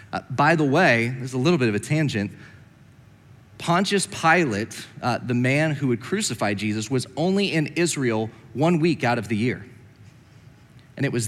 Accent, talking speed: American, 175 wpm